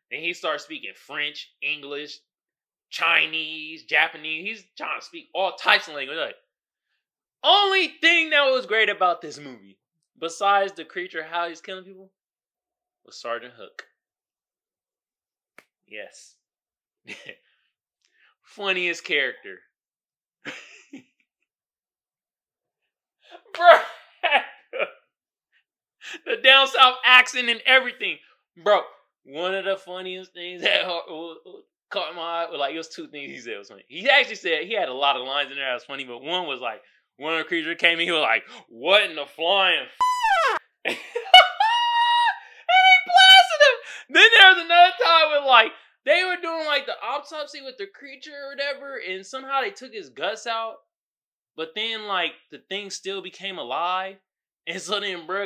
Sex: male